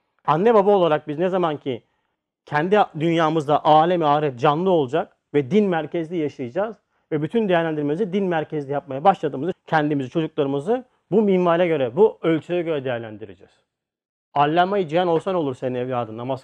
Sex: male